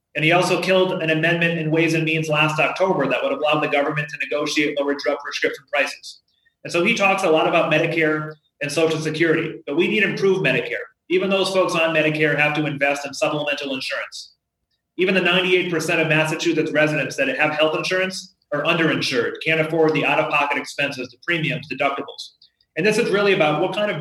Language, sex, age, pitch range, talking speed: English, male, 30-49, 150-180 Hz, 195 wpm